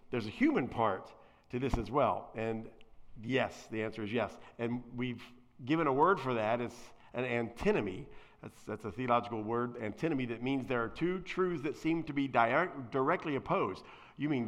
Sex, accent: male, American